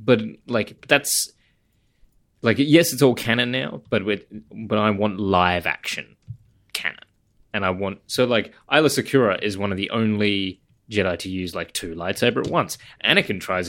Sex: male